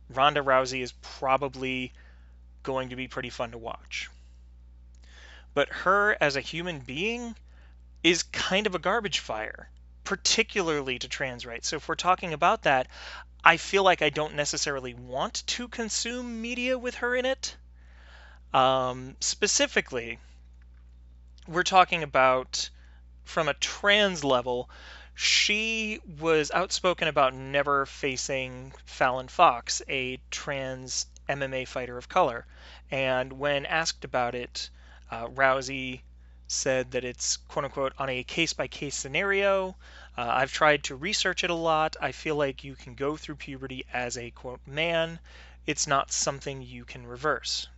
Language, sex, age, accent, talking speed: English, male, 30-49, American, 140 wpm